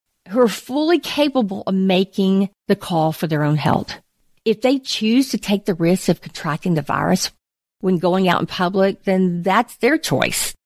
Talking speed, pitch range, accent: 180 wpm, 185-245 Hz, American